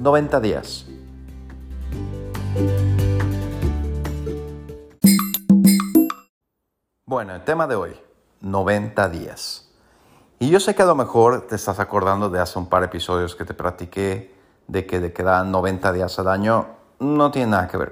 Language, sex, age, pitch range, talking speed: Spanish, male, 50-69, 90-110 Hz, 135 wpm